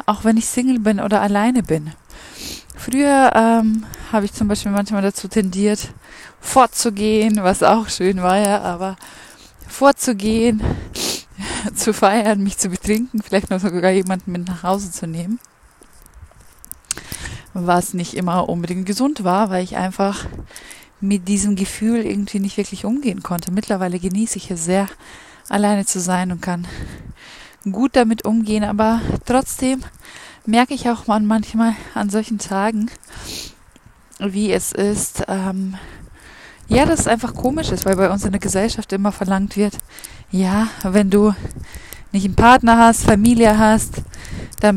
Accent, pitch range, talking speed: German, 190-220 Hz, 145 wpm